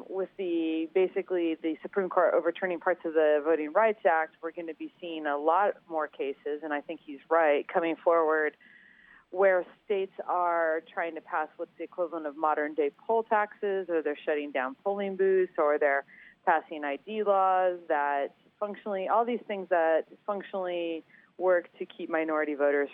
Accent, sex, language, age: American, female, English, 30-49